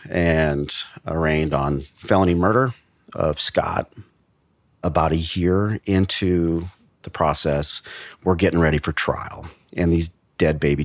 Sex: male